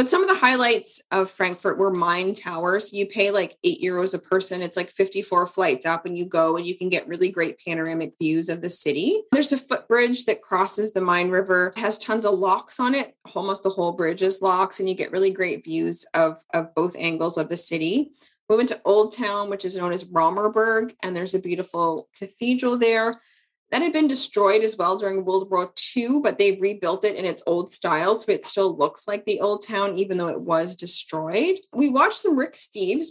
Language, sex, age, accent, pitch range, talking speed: English, female, 20-39, American, 180-245 Hz, 220 wpm